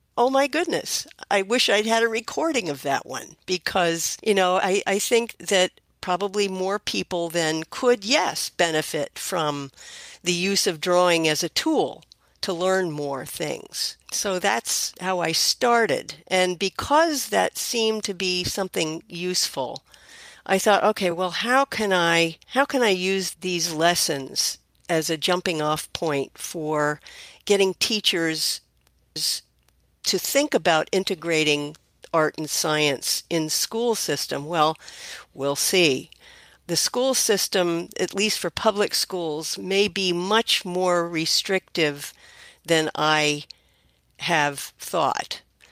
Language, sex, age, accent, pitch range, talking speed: English, female, 50-69, American, 155-200 Hz, 135 wpm